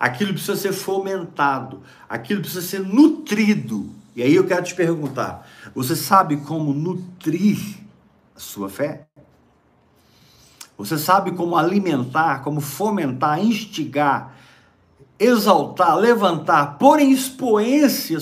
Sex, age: male, 50-69